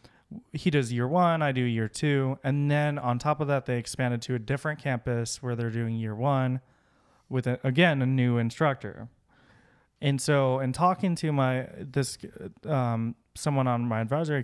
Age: 20-39